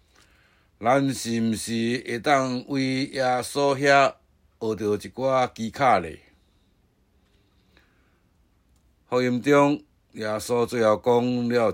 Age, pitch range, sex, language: 60-79, 90-125 Hz, male, Chinese